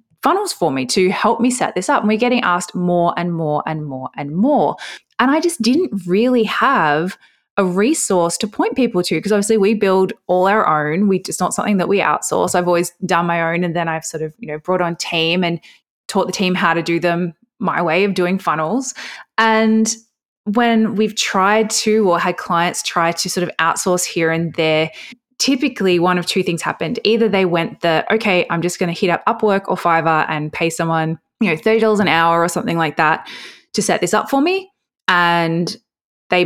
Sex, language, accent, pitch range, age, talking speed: female, English, Australian, 170-215 Hz, 20-39, 215 wpm